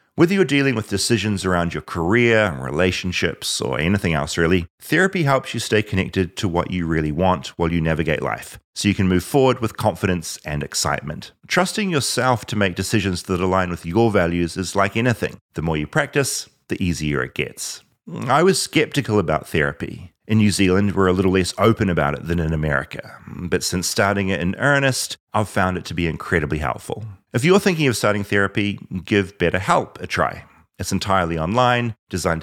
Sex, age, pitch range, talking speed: male, 30-49, 85-120 Hz, 190 wpm